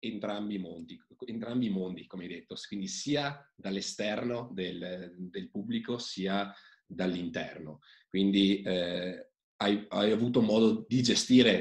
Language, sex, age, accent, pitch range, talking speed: Italian, male, 30-49, native, 90-120 Hz, 130 wpm